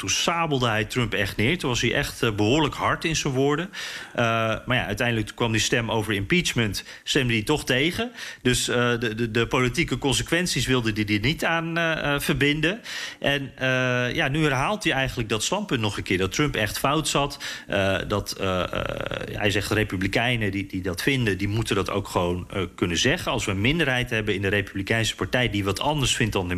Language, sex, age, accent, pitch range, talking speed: Dutch, male, 40-59, Dutch, 105-140 Hz, 215 wpm